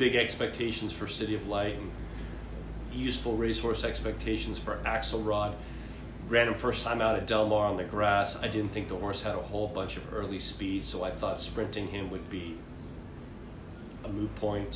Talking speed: 185 wpm